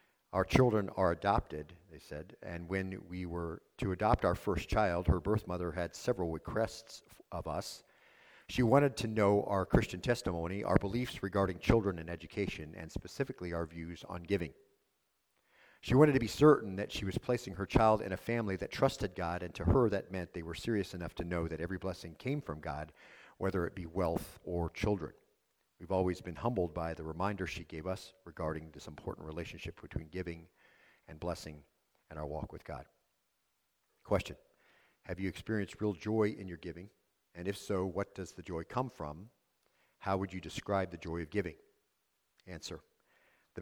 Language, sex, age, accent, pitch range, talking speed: English, male, 50-69, American, 85-105 Hz, 185 wpm